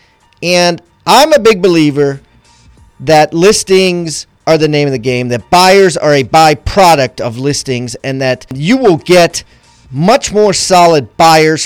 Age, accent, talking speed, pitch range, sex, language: 40-59, American, 150 wpm, 135-190 Hz, male, English